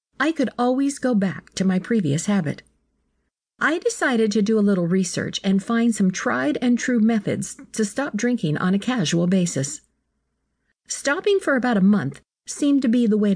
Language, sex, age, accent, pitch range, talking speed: English, female, 50-69, American, 180-245 Hz, 170 wpm